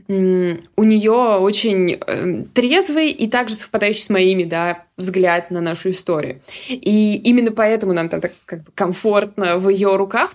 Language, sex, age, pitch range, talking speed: Russian, female, 20-39, 190-235 Hz, 150 wpm